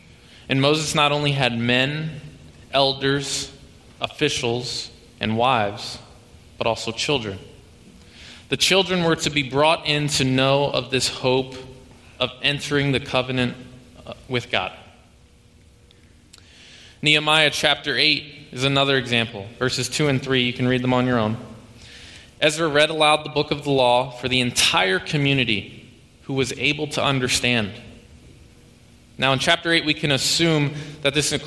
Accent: American